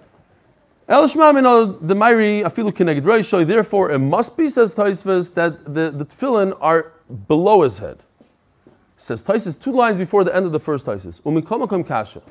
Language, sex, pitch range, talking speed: English, male, 150-205 Hz, 115 wpm